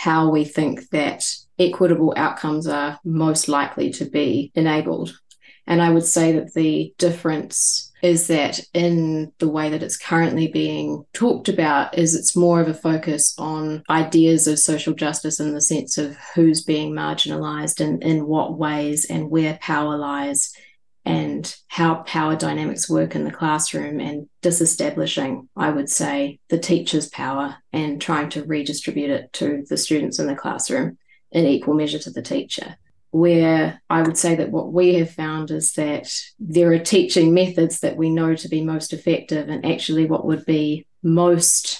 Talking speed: 170 wpm